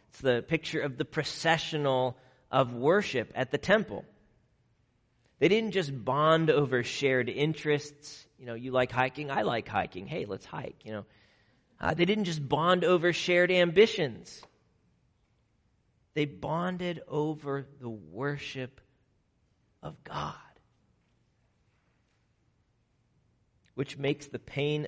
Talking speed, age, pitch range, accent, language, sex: 120 wpm, 40-59, 115-140 Hz, American, English, male